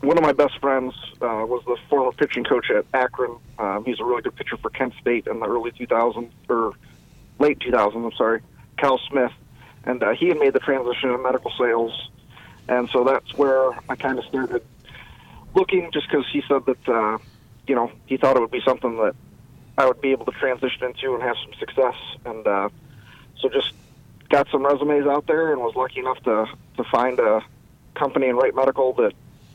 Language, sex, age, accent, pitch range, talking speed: English, male, 40-59, American, 120-135 Hz, 205 wpm